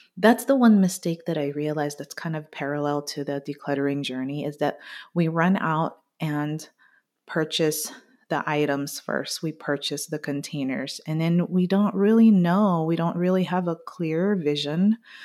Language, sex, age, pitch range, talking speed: English, female, 30-49, 145-180 Hz, 165 wpm